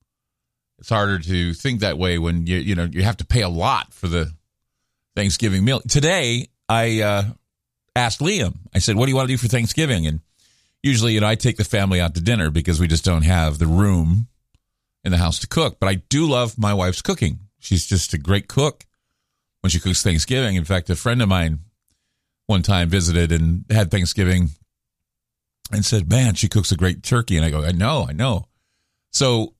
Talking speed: 205 wpm